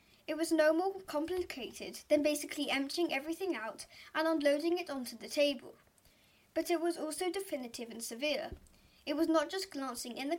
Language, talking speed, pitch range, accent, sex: English, 175 wpm, 255-325 Hz, British, female